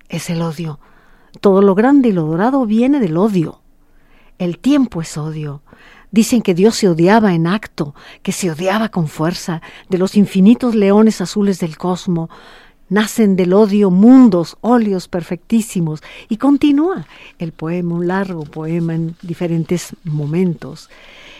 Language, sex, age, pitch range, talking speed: Spanish, female, 50-69, 170-215 Hz, 145 wpm